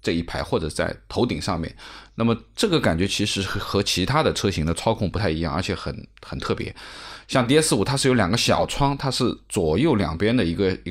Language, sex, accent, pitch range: Chinese, male, native, 90-125 Hz